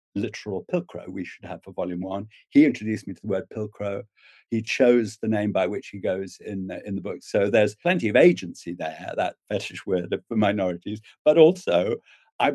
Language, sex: English, male